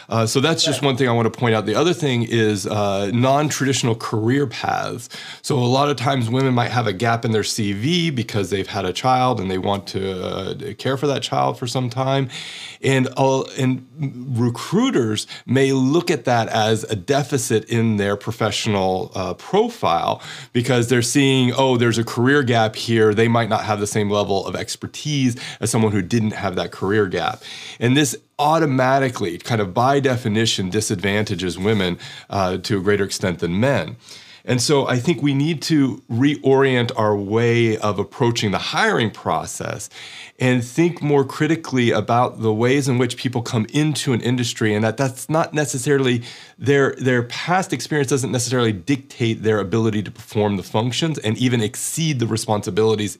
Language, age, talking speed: English, 40-59, 180 wpm